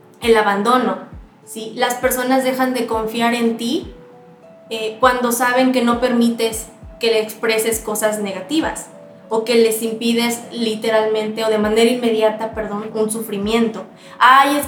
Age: 20-39